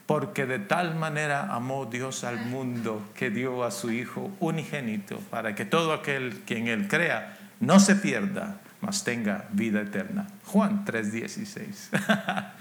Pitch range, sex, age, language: 160-205 Hz, male, 50-69, English